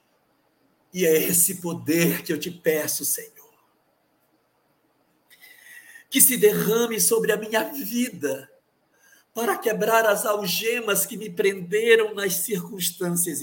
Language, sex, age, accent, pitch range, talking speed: Portuguese, male, 60-79, Brazilian, 150-225 Hz, 110 wpm